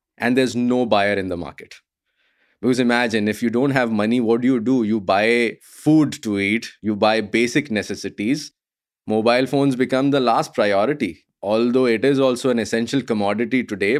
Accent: Indian